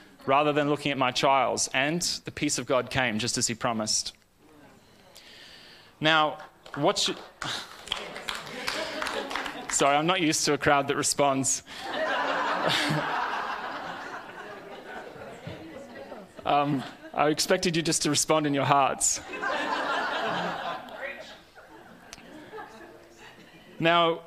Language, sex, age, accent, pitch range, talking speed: English, male, 20-39, Australian, 125-155 Hz, 95 wpm